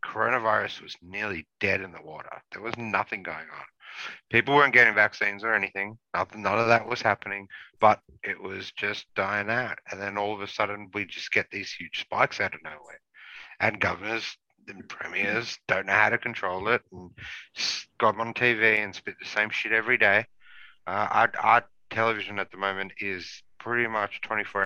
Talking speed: 185 wpm